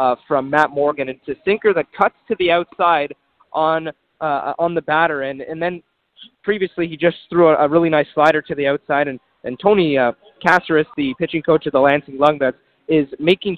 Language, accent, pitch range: English, American, 145-175 Hz